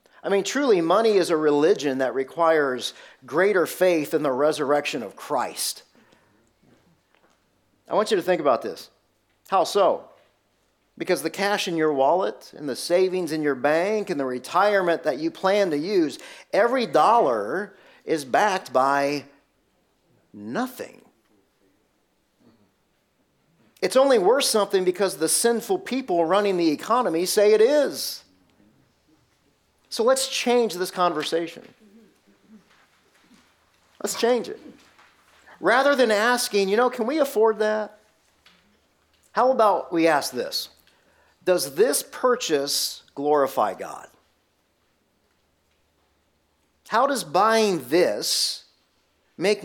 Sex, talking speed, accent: male, 115 wpm, American